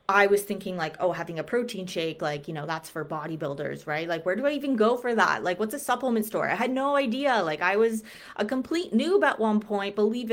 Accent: American